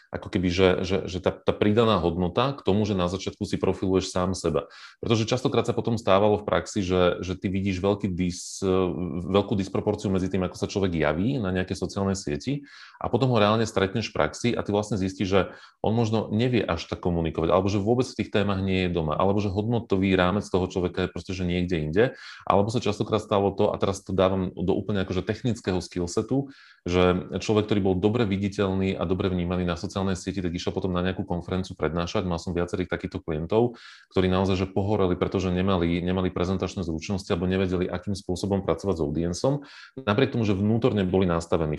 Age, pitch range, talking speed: 30-49, 90-105 Hz, 200 wpm